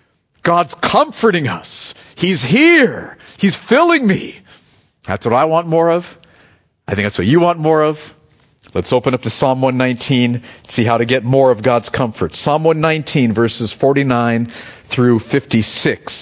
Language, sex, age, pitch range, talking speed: English, male, 40-59, 115-155 Hz, 160 wpm